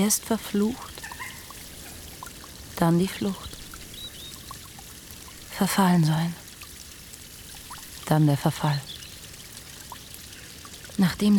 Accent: German